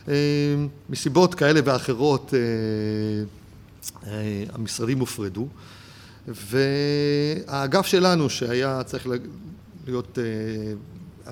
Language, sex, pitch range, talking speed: Hebrew, male, 115-160 Hz, 75 wpm